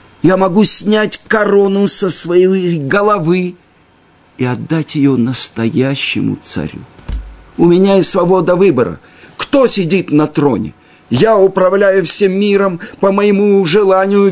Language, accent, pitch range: Russian, native, 130-200 Hz